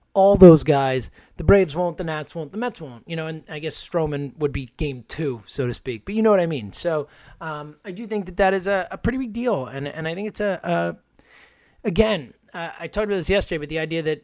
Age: 30-49